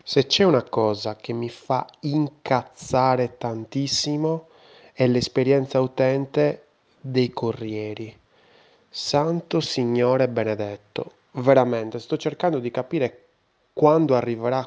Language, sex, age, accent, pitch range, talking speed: Italian, male, 20-39, native, 115-145 Hz, 100 wpm